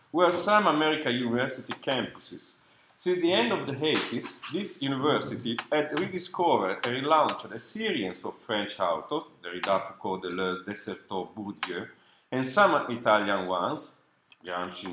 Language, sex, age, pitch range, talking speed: English, male, 50-69, 105-155 Hz, 135 wpm